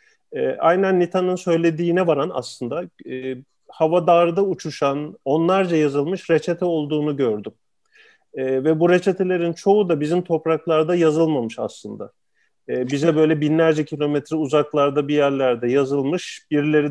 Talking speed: 115 wpm